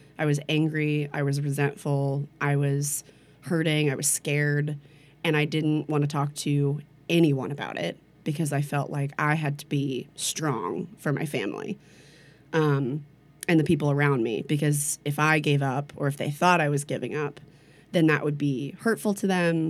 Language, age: English, 20-39